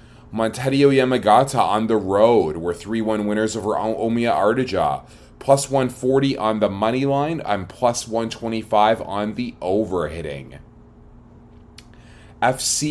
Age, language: 20-39, English